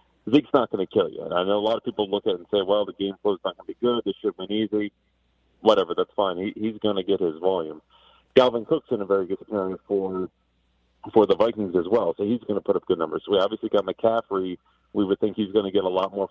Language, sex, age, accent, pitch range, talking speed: English, male, 40-59, American, 90-115 Hz, 285 wpm